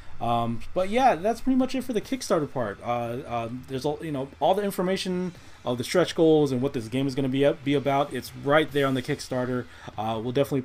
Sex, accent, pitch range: male, American, 115-140 Hz